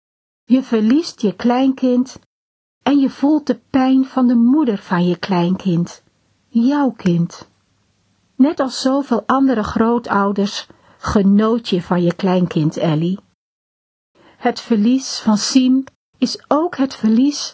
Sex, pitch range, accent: female, 205-265 Hz, Dutch